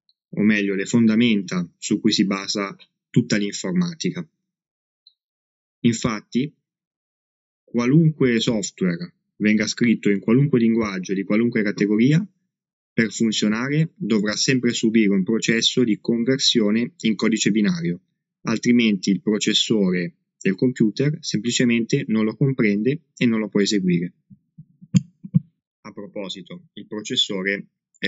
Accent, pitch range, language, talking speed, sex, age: native, 100-170 Hz, Italian, 110 wpm, male, 20-39